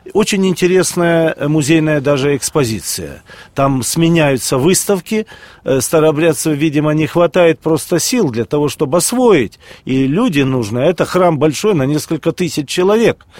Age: 40-59